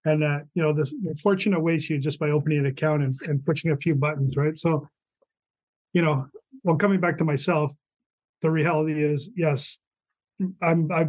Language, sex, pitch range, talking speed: English, male, 145-160 Hz, 185 wpm